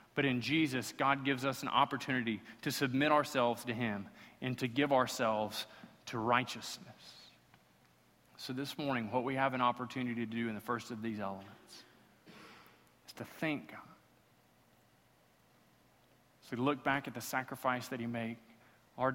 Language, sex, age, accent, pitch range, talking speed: English, male, 40-59, American, 110-130 Hz, 155 wpm